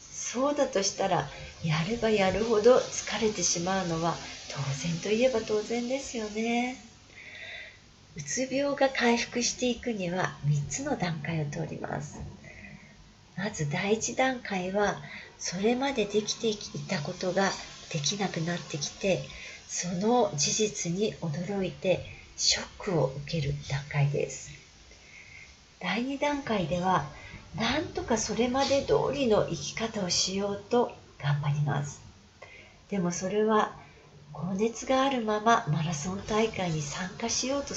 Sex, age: female, 40-59